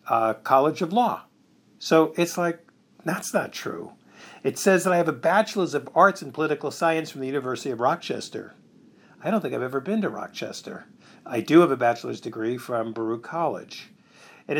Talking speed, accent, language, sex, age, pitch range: 185 wpm, American, English, male, 50-69, 130-185 Hz